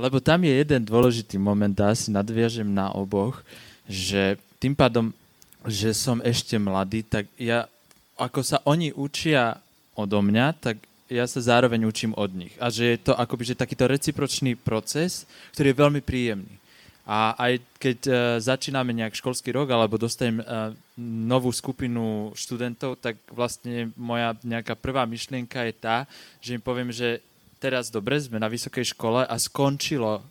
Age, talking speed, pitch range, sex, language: 20-39, 155 wpm, 115-135 Hz, male, Slovak